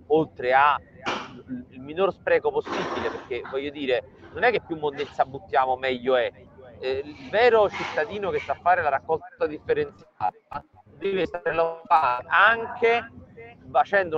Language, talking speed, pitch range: Italian, 125 wpm, 155-235 Hz